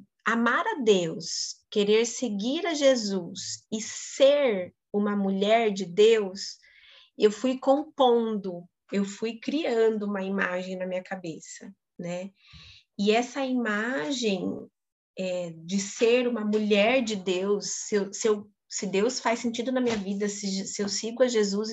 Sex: female